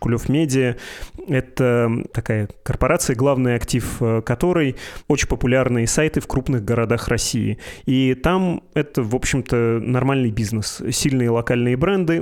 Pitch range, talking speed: 115-135 Hz, 130 wpm